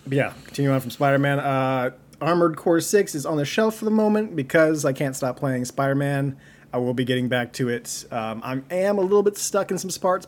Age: 30-49